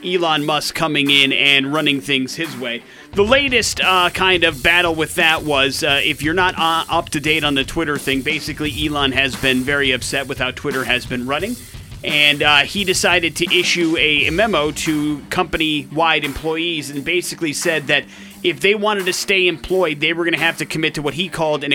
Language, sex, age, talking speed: English, male, 30-49, 210 wpm